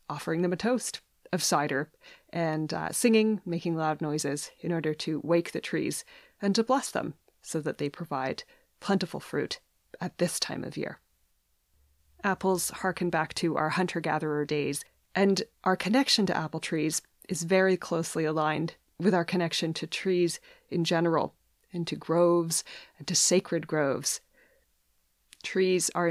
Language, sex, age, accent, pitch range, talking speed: English, female, 20-39, American, 155-185 Hz, 150 wpm